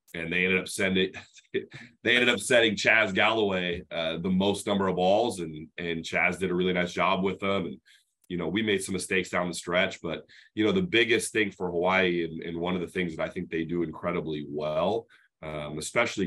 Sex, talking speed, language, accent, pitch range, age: male, 220 wpm, English, American, 85-95 Hz, 30-49